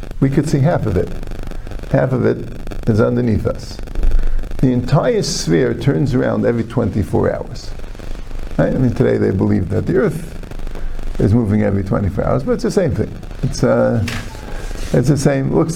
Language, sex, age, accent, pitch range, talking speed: English, male, 50-69, American, 95-130 Hz, 170 wpm